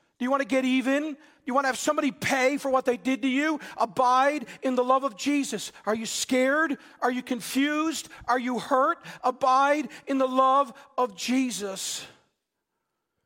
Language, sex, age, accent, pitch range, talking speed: English, male, 50-69, American, 170-255 Hz, 180 wpm